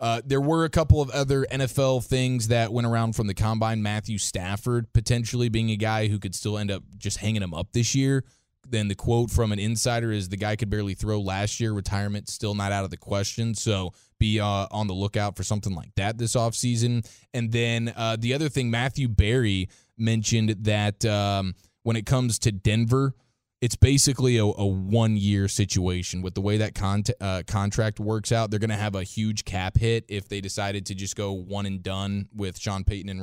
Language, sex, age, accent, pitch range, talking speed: English, male, 20-39, American, 100-115 Hz, 210 wpm